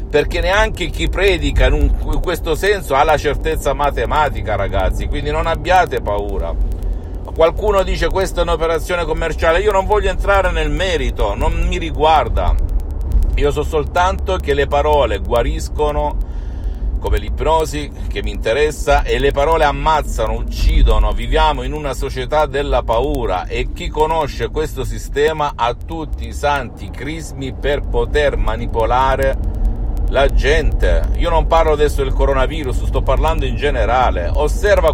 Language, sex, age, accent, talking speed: Italian, male, 50-69, native, 140 wpm